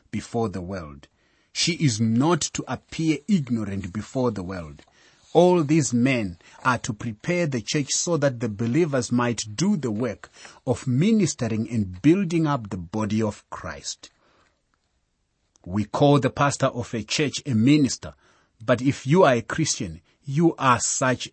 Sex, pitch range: male, 110-145 Hz